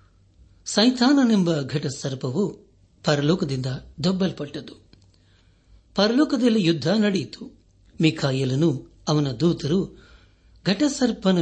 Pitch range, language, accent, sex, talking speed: 125-170 Hz, Kannada, native, male, 65 wpm